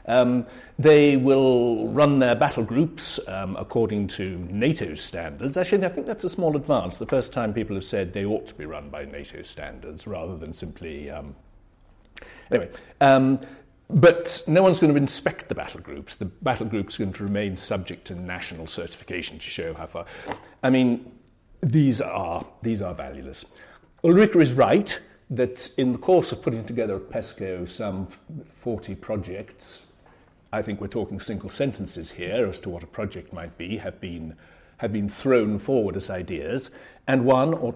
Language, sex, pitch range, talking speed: English, male, 95-135 Hz, 175 wpm